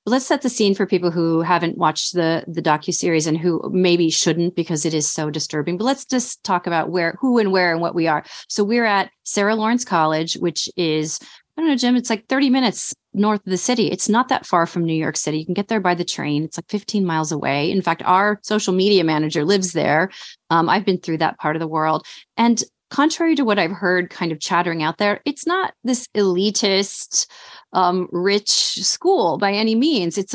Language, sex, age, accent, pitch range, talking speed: English, female, 30-49, American, 180-245 Hz, 225 wpm